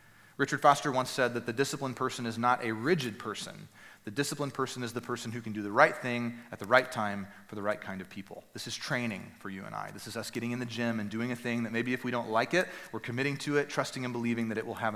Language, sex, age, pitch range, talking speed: English, male, 30-49, 115-165 Hz, 285 wpm